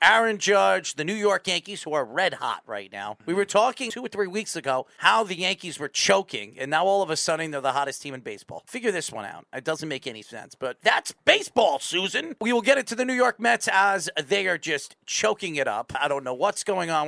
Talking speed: 255 wpm